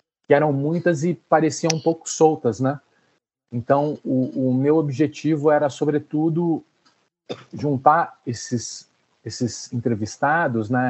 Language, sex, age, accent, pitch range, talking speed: Portuguese, male, 40-59, Brazilian, 115-145 Hz, 110 wpm